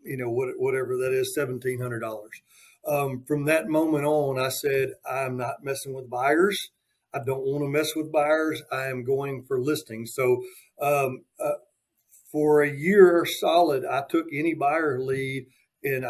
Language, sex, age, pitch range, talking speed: English, male, 50-69, 130-150 Hz, 160 wpm